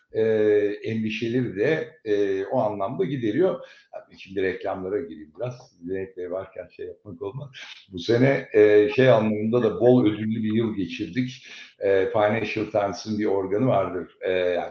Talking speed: 140 wpm